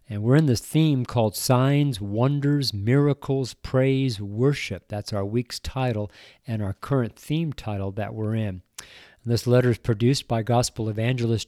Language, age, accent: English, 50-69, American